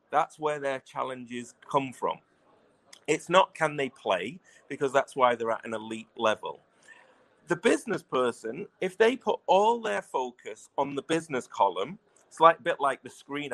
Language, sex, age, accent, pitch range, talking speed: English, male, 40-59, British, 125-185 Hz, 175 wpm